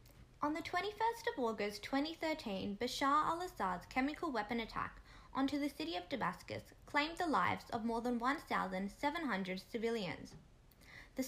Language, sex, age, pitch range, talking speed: English, female, 10-29, 210-285 Hz, 135 wpm